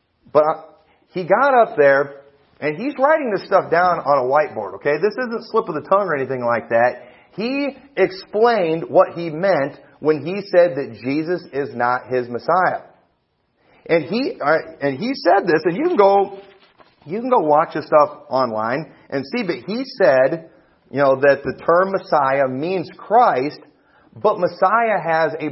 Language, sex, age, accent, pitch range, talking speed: English, male, 40-59, American, 140-195 Hz, 170 wpm